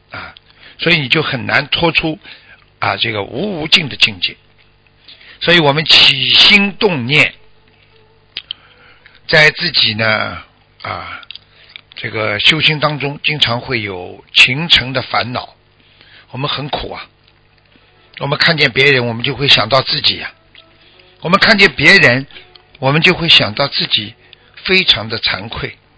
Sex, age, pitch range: male, 60-79, 115-160 Hz